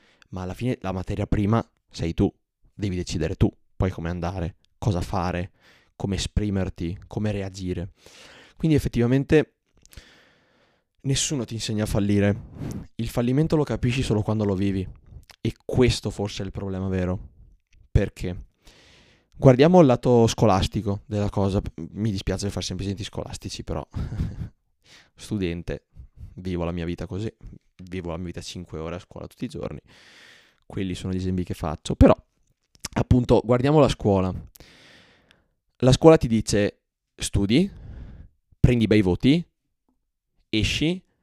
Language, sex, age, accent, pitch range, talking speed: Italian, male, 20-39, native, 90-120 Hz, 135 wpm